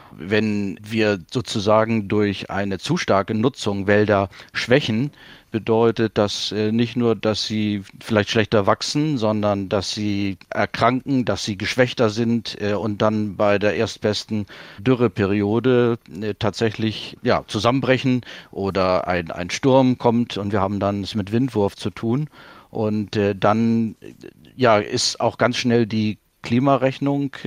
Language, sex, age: German, male, 50-69